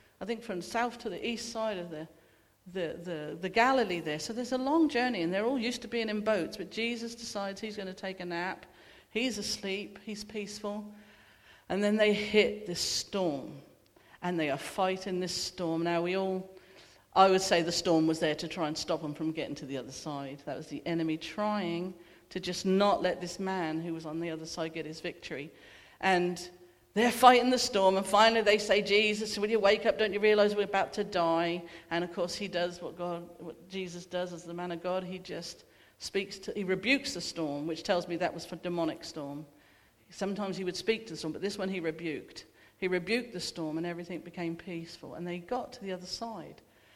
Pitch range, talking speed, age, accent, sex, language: 170-215 Hz, 220 wpm, 50-69, British, female, English